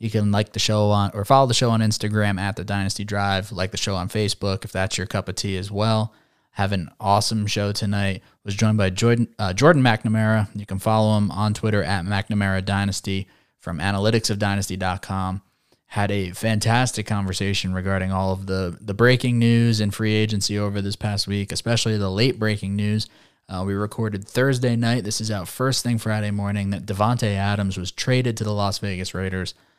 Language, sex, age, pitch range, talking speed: English, male, 20-39, 95-110 Hz, 195 wpm